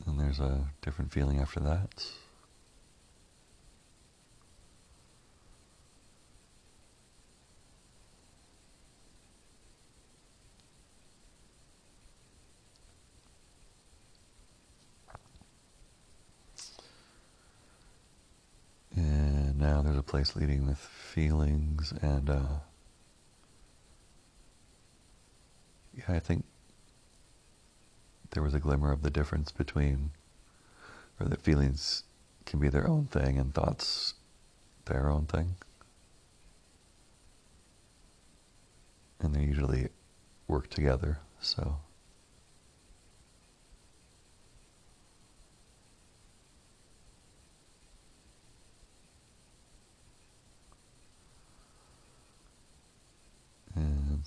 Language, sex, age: English, male, 60-79